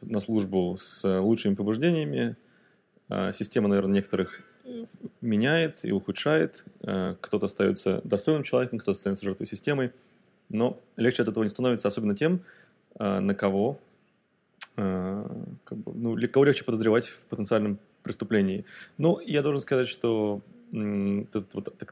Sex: male